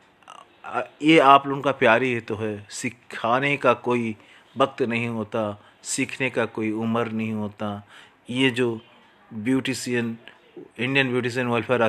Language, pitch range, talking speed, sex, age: English, 110-125 Hz, 140 wpm, male, 30-49